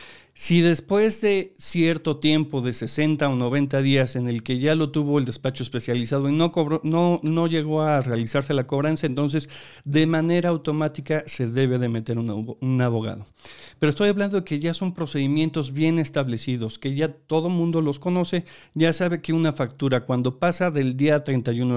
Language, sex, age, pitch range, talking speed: Spanish, male, 50-69, 130-165 Hz, 175 wpm